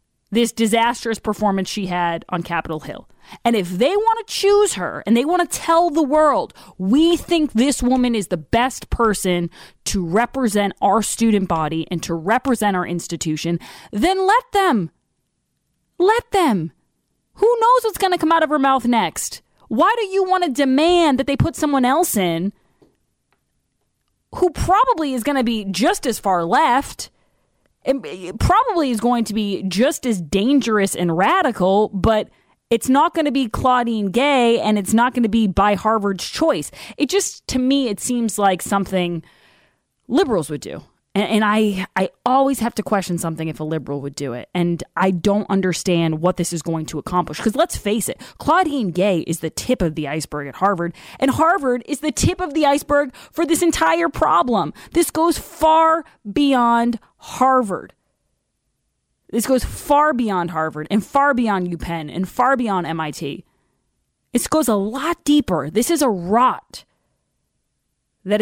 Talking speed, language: 170 wpm, English